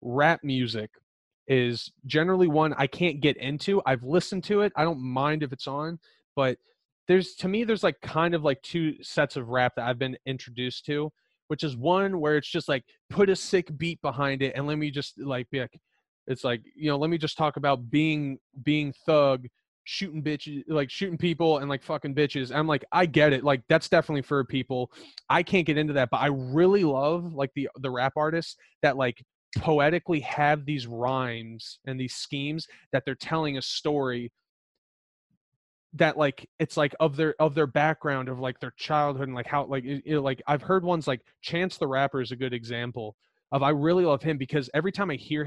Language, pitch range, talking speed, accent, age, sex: English, 130-160 Hz, 205 wpm, American, 20-39, male